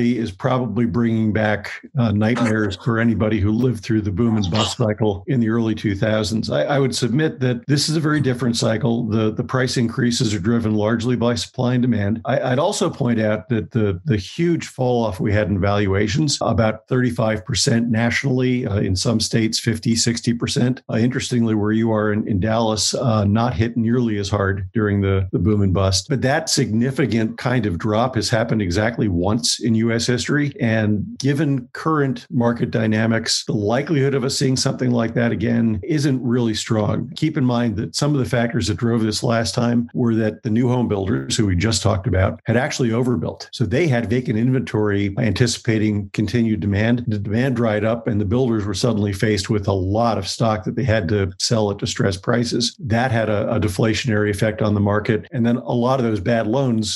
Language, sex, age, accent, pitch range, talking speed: English, male, 50-69, American, 110-125 Hz, 200 wpm